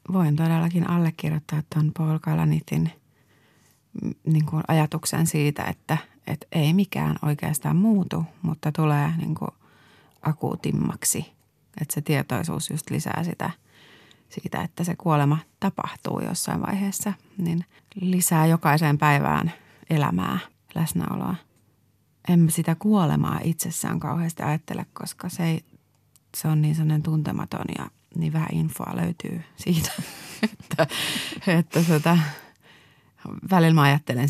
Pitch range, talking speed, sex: 150-175 Hz, 110 wpm, female